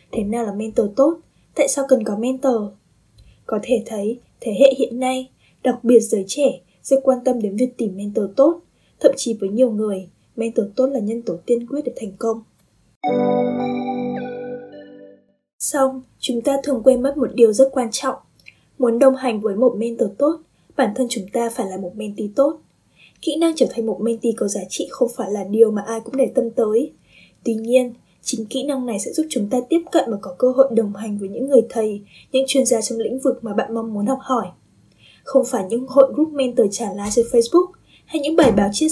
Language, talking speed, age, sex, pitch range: Vietnamese, 215 wpm, 10-29, female, 215-265 Hz